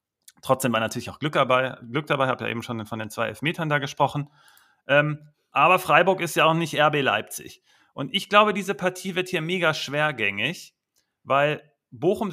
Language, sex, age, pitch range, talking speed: German, male, 40-59, 140-175 Hz, 190 wpm